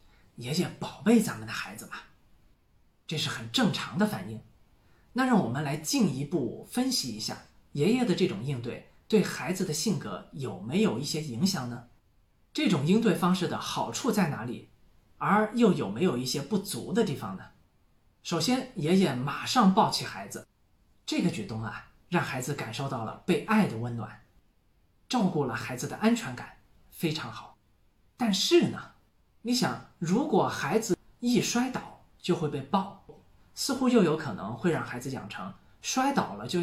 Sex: male